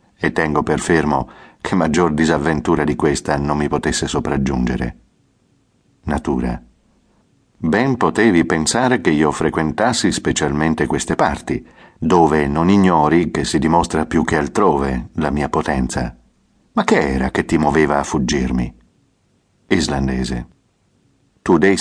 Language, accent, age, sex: Italian, native, 50-69, male